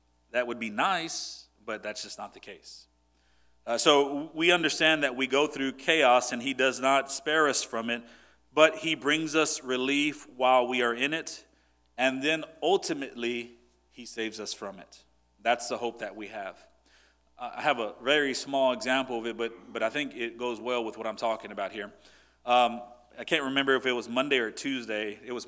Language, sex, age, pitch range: English, male, 40-59, 115-130 Hz